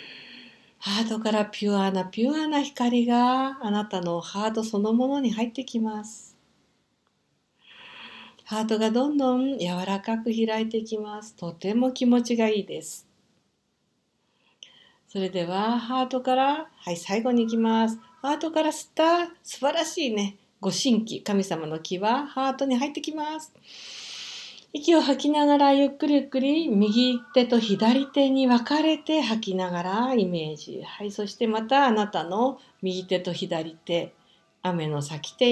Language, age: Japanese, 60-79